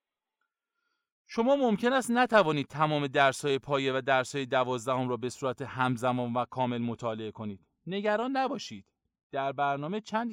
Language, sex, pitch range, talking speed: Persian, male, 120-185 Hz, 135 wpm